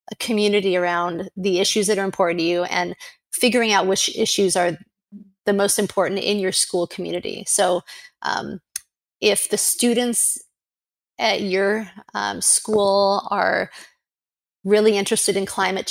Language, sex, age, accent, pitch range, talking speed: English, female, 30-49, American, 190-220 Hz, 140 wpm